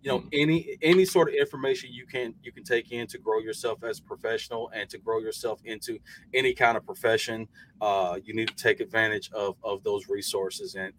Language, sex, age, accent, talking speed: English, male, 30-49, American, 215 wpm